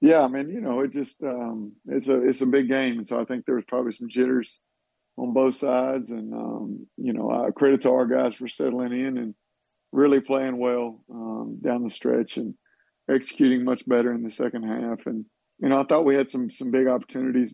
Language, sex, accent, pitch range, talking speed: English, male, American, 120-135 Hz, 220 wpm